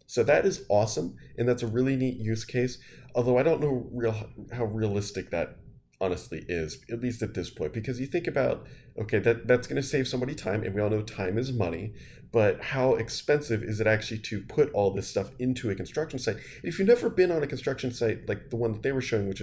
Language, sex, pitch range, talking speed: English, male, 105-130 Hz, 230 wpm